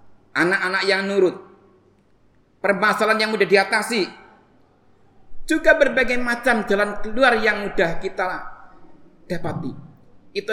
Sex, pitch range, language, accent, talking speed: male, 165-255 Hz, Indonesian, native, 95 wpm